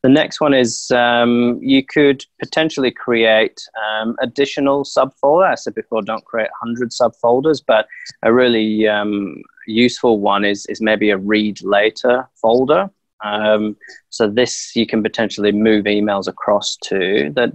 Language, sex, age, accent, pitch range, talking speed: English, male, 20-39, British, 105-120 Hz, 145 wpm